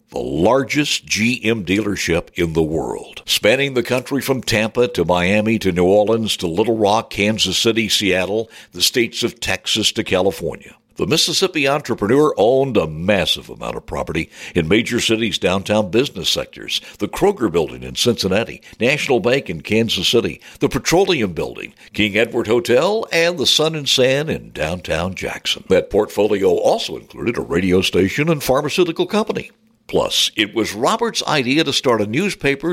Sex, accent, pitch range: male, American, 100-155 Hz